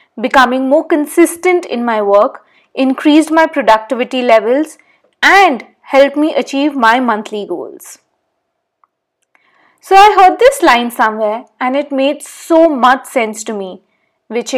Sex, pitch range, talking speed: female, 240-330 Hz, 130 wpm